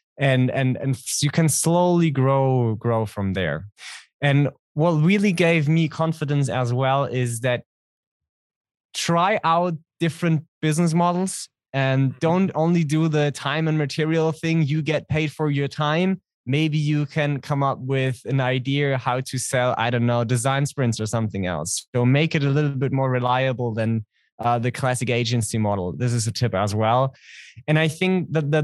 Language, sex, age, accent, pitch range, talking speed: English, male, 20-39, German, 125-155 Hz, 175 wpm